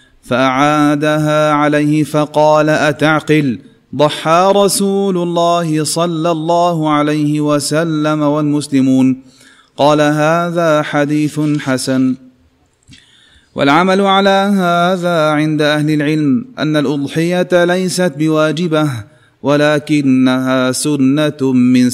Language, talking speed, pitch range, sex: Arabic, 80 wpm, 150-175 Hz, male